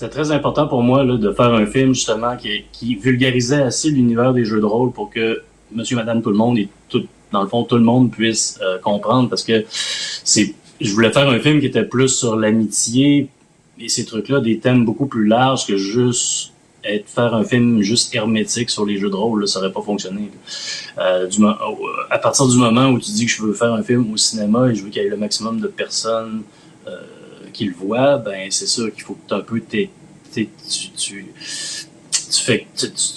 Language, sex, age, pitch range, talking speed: French, male, 30-49, 110-130 Hz, 225 wpm